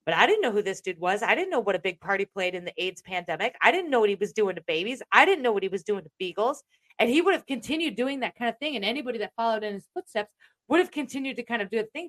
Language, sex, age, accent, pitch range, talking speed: English, female, 30-49, American, 200-270 Hz, 320 wpm